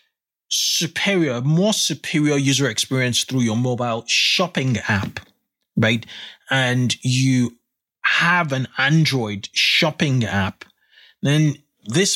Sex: male